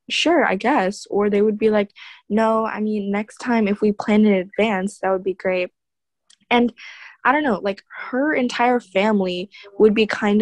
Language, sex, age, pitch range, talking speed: English, female, 10-29, 190-235 Hz, 190 wpm